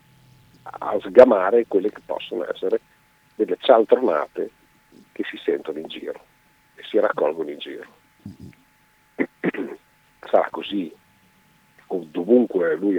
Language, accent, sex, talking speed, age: Italian, native, male, 100 wpm, 50-69